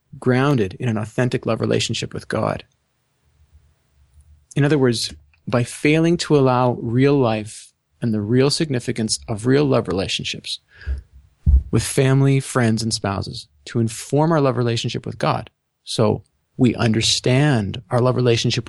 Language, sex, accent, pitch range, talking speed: English, male, American, 110-135 Hz, 140 wpm